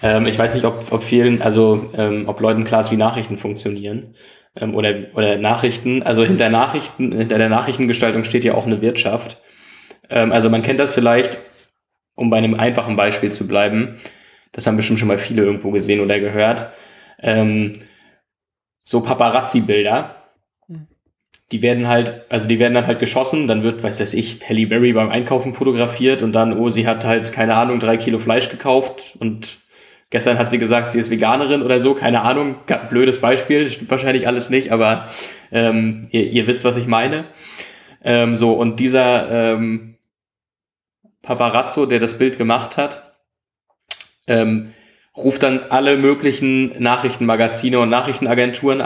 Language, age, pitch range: German, 20-39, 110-125 Hz